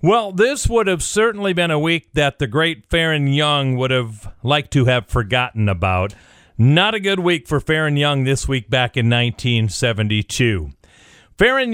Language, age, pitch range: English, 40-59, 120-185 Hz